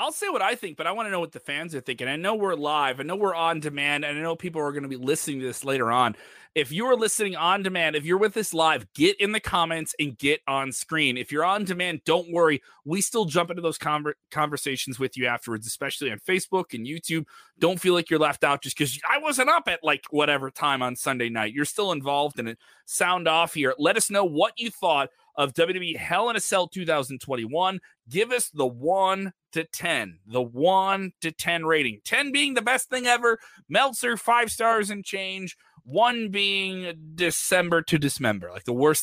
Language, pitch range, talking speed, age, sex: English, 145-215 Hz, 225 wpm, 30-49, male